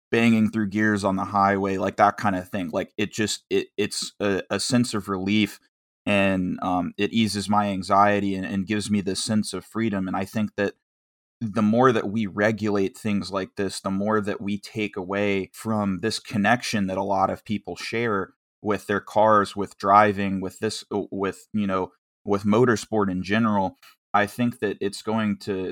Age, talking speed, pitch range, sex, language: 20-39, 190 wpm, 95-105 Hz, male, English